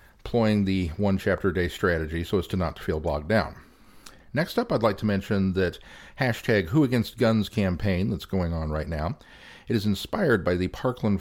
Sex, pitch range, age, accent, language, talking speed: male, 90-110 Hz, 50-69, American, English, 175 wpm